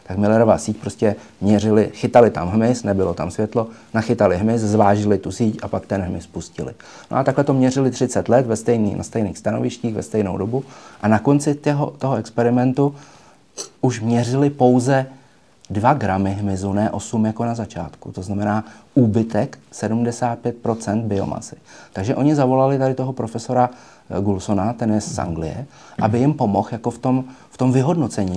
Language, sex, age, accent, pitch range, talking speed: Czech, male, 30-49, native, 100-125 Hz, 165 wpm